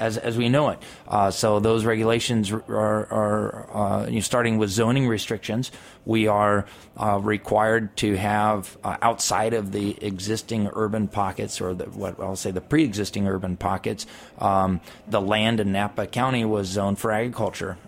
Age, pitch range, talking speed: 30-49, 100-115 Hz, 160 wpm